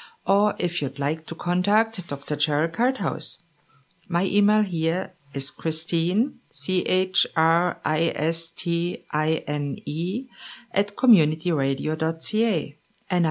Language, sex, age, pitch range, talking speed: English, female, 50-69, 150-220 Hz, 80 wpm